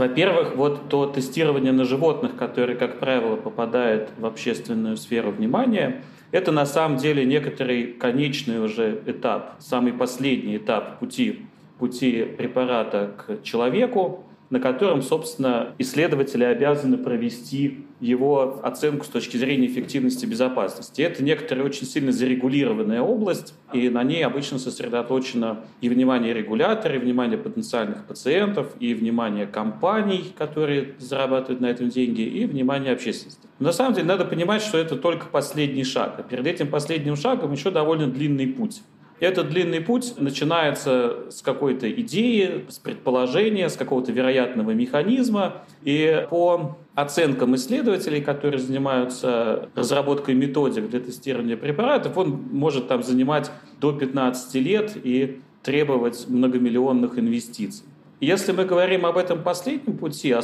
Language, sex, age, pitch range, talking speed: Russian, male, 30-49, 125-175 Hz, 135 wpm